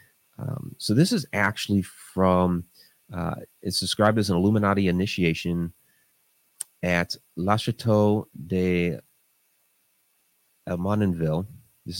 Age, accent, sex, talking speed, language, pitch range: 30-49, American, male, 95 wpm, English, 85-110 Hz